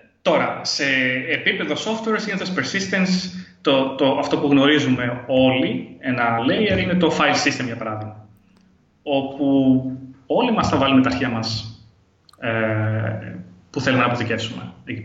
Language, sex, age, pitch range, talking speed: Greek, male, 20-39, 115-150 Hz, 135 wpm